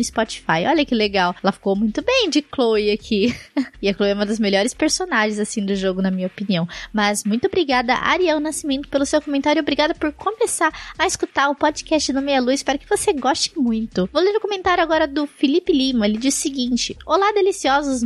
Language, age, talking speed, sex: Portuguese, 20-39, 205 wpm, female